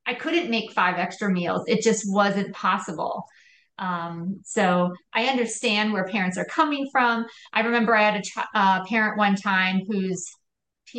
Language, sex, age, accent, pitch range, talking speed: English, female, 30-49, American, 190-230 Hz, 165 wpm